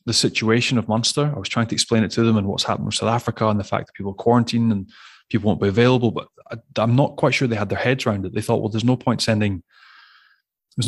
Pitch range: 105-125 Hz